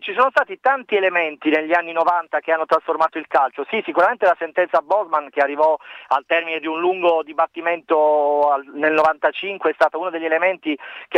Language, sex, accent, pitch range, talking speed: Italian, male, native, 150-180 Hz, 185 wpm